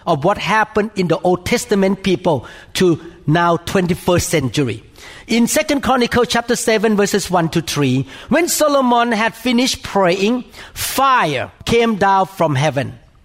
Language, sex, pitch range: English, male, 165-255 Hz